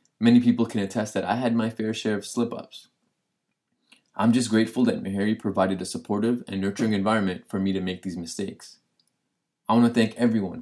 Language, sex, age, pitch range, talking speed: English, male, 20-39, 100-115 Hz, 200 wpm